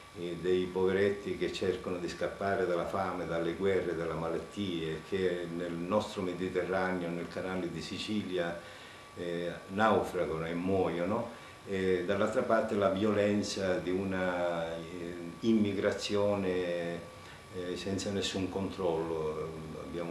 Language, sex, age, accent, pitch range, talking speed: Italian, male, 50-69, native, 85-105 Hz, 115 wpm